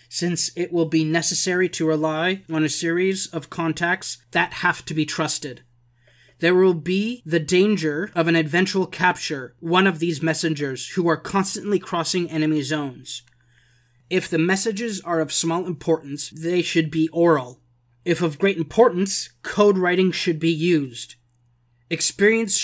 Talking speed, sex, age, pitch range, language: 150 wpm, male, 20-39, 155-180 Hz, English